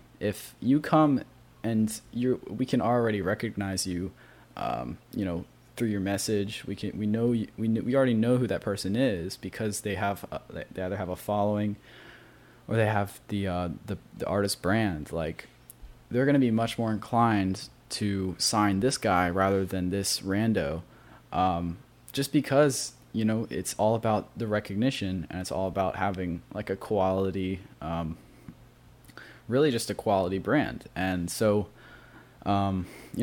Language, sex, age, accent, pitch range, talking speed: English, male, 20-39, American, 95-115 Hz, 165 wpm